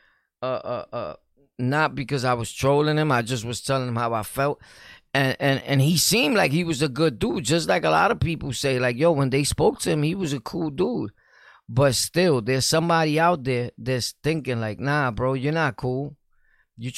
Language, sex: English, male